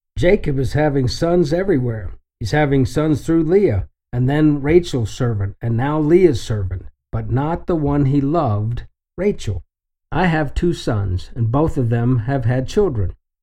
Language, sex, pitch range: English, male, 110-150 Hz